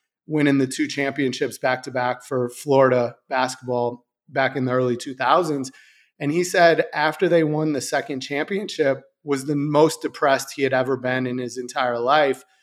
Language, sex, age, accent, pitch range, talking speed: English, male, 30-49, American, 135-170 Hz, 170 wpm